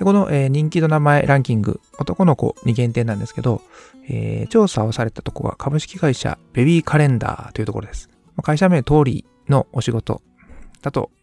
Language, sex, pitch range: Japanese, male, 115-150 Hz